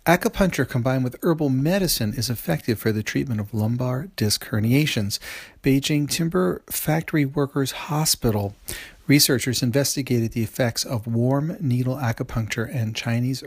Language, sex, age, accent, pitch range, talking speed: English, male, 40-59, American, 115-145 Hz, 130 wpm